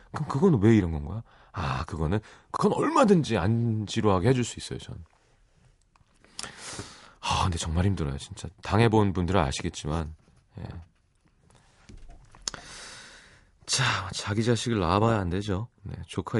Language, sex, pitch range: Korean, male, 85-115 Hz